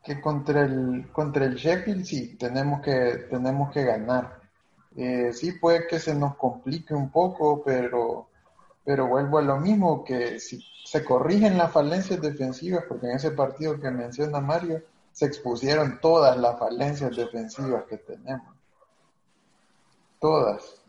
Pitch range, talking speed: 125-155 Hz, 145 wpm